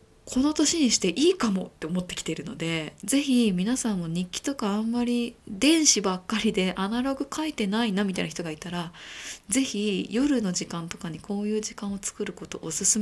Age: 20-39